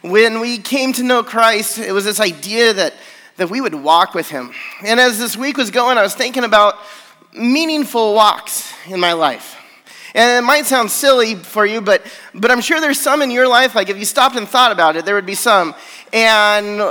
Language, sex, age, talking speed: English, male, 30-49, 215 wpm